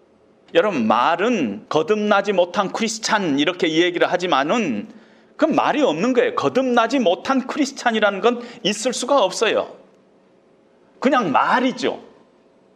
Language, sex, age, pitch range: Korean, male, 40-59, 205-285 Hz